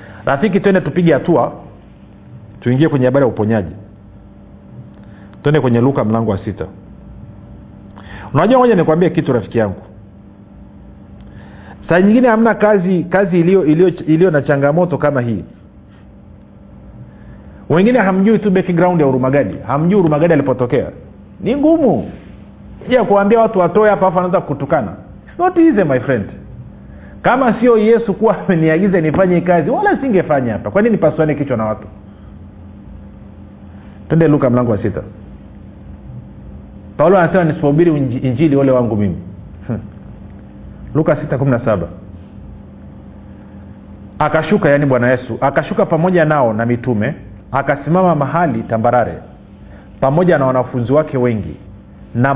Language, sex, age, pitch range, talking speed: Swahili, male, 50-69, 100-170 Hz, 120 wpm